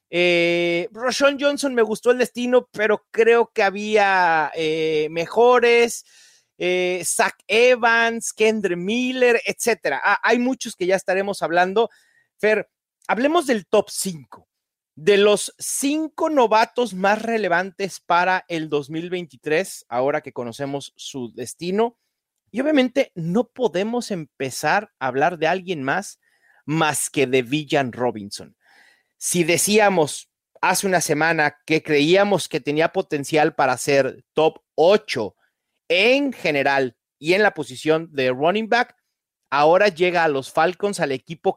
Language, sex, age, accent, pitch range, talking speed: Spanish, male, 40-59, Mexican, 155-230 Hz, 130 wpm